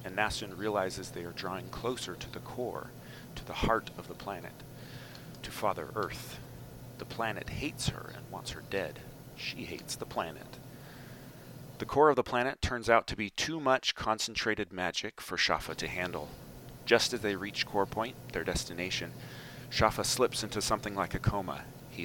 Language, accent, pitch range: English, American, 95-130 Hz